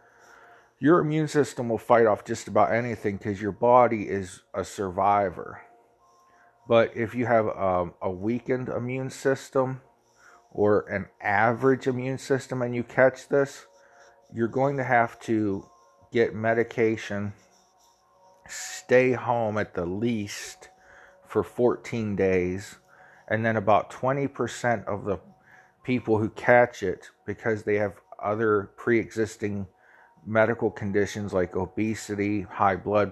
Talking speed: 125 wpm